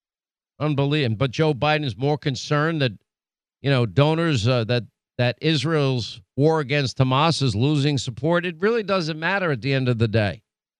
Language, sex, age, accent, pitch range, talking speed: English, male, 50-69, American, 135-165 Hz, 170 wpm